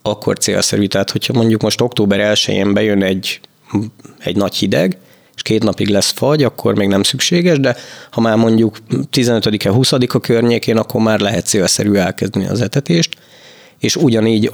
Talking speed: 155 wpm